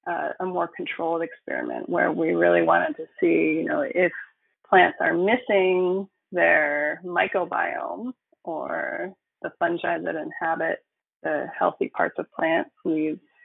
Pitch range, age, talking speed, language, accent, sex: 165-255 Hz, 20-39, 135 wpm, English, American, female